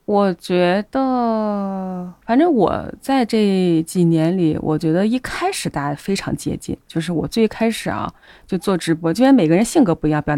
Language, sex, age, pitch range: Chinese, female, 20-39, 165-225 Hz